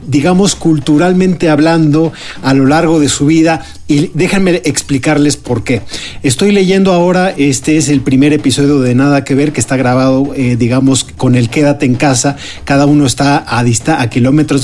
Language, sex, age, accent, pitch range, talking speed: Spanish, male, 40-59, Mexican, 135-175 Hz, 170 wpm